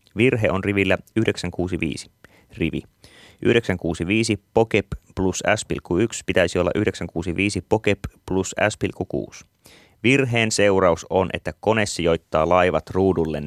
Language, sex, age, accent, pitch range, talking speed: Finnish, male, 30-49, native, 85-105 Hz, 105 wpm